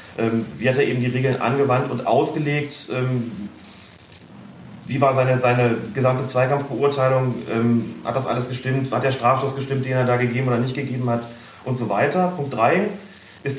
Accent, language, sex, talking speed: German, German, male, 165 wpm